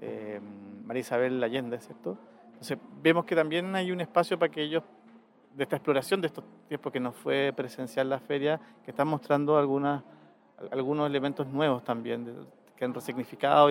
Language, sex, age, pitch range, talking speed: Spanish, male, 40-59, 125-155 Hz, 165 wpm